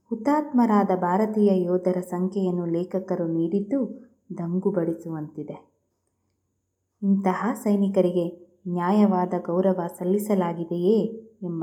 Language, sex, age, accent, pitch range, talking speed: Kannada, female, 20-39, native, 175-220 Hz, 70 wpm